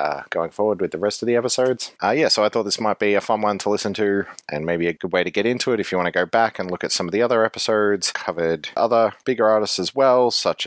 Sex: male